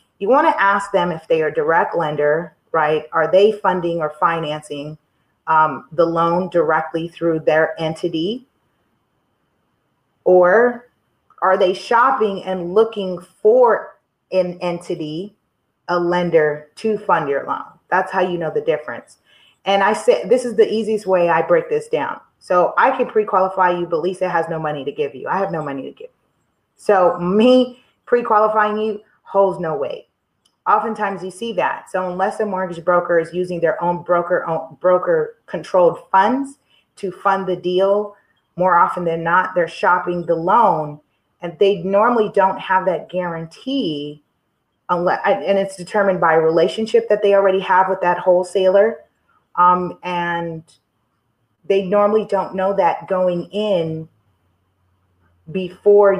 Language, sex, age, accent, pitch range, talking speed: English, female, 30-49, American, 165-205 Hz, 155 wpm